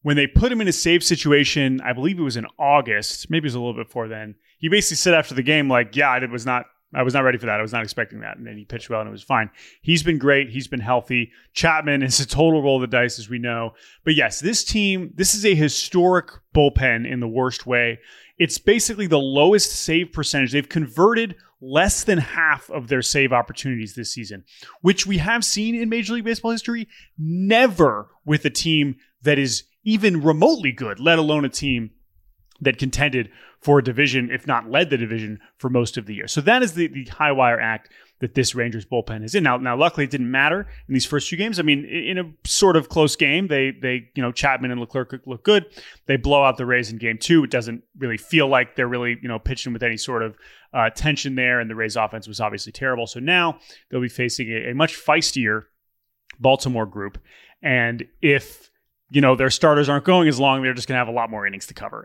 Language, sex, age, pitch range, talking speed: English, male, 30-49, 120-160 Hz, 235 wpm